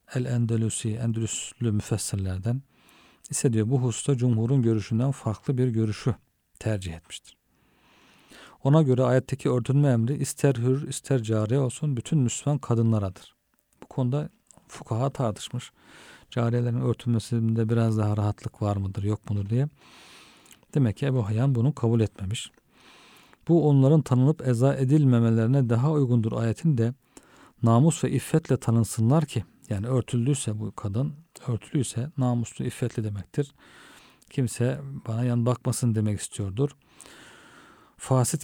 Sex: male